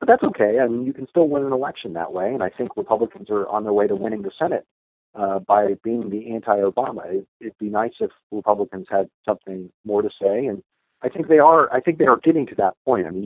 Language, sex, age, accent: English, male, 40-59, American